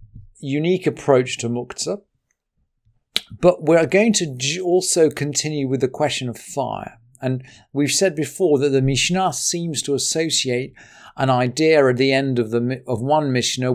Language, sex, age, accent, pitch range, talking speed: English, male, 40-59, British, 125-170 Hz, 150 wpm